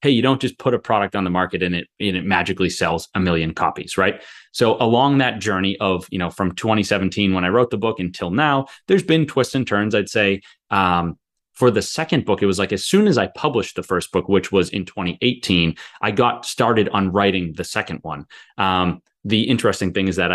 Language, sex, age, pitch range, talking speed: English, male, 30-49, 90-110 Hz, 225 wpm